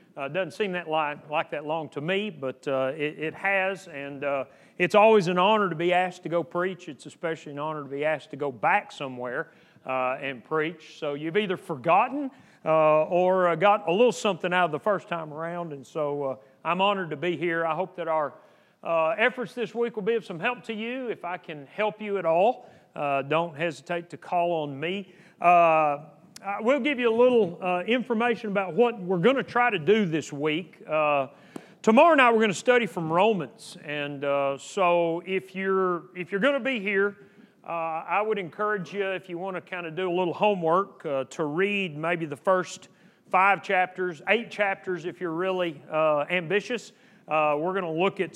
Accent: American